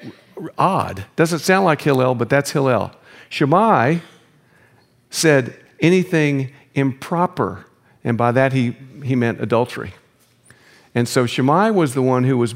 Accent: American